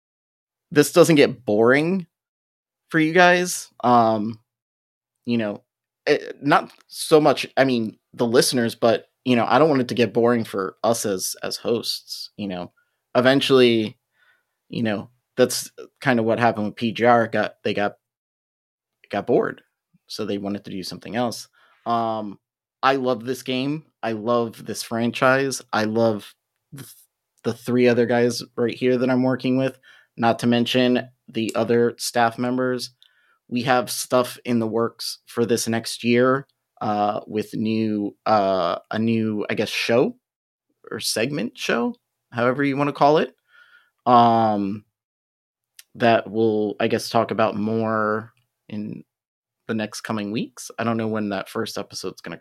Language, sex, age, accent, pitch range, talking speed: English, male, 30-49, American, 110-125 Hz, 155 wpm